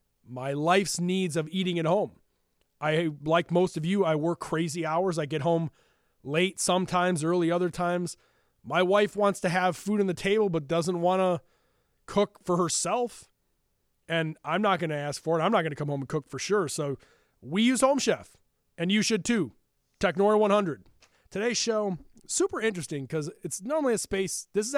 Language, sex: English, male